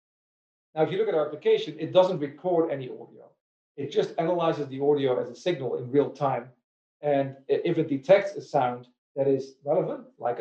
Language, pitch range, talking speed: English, 140-170 Hz, 190 wpm